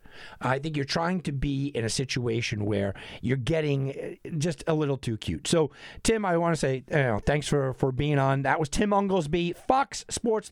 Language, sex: English, male